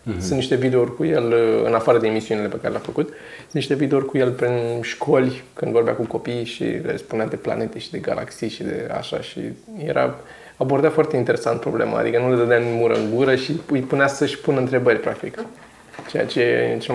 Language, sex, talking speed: Romanian, male, 210 wpm